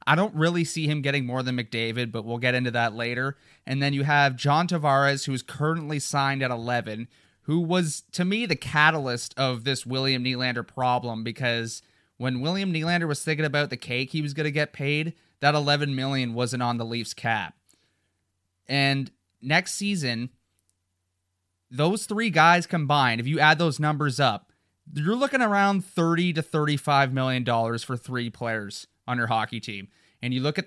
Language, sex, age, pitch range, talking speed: English, male, 30-49, 120-170 Hz, 180 wpm